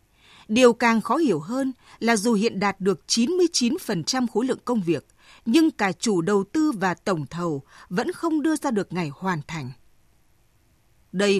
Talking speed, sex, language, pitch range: 170 wpm, female, Vietnamese, 185-260 Hz